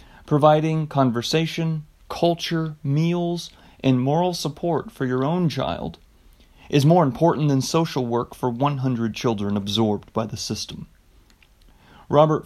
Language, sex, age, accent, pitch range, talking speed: English, male, 30-49, American, 125-155 Hz, 120 wpm